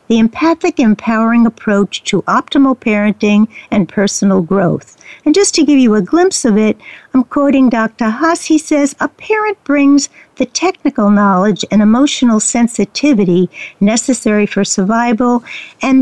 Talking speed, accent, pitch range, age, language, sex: 140 wpm, American, 215-285 Hz, 60-79, English, female